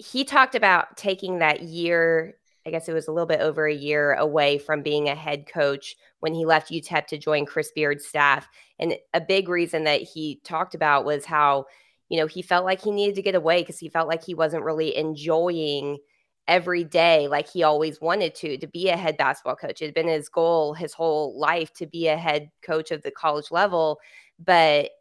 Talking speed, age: 215 wpm, 20-39